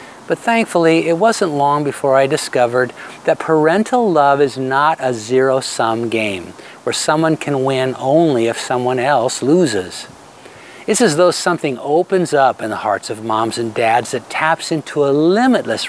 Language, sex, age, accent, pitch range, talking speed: English, male, 50-69, American, 125-170 Hz, 160 wpm